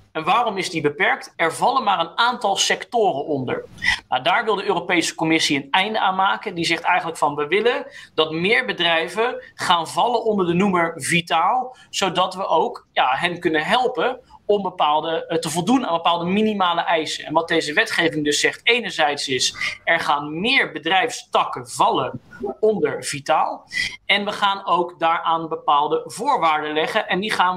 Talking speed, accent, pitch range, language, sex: 165 wpm, Dutch, 160-210 Hz, Dutch, male